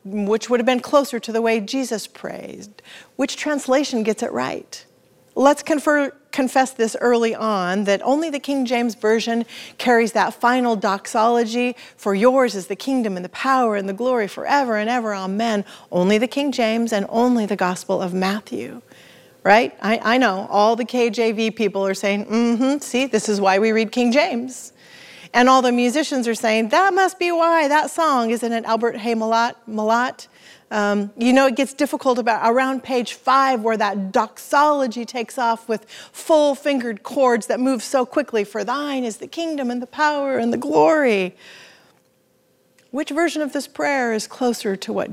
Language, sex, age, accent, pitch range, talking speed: English, female, 40-59, American, 220-265 Hz, 175 wpm